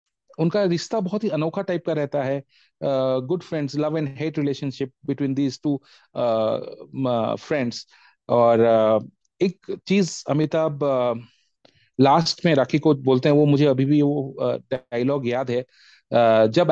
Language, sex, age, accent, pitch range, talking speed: Hindi, male, 30-49, native, 130-165 Hz, 55 wpm